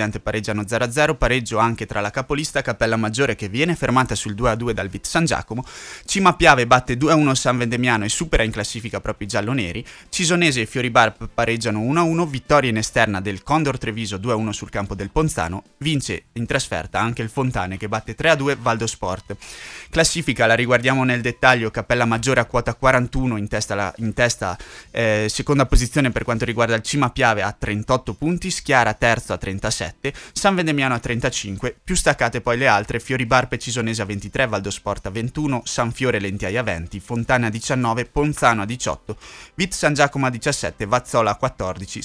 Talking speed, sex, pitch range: 185 wpm, male, 110-135 Hz